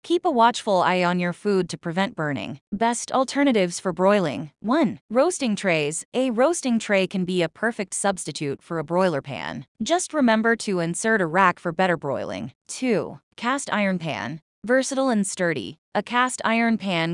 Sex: female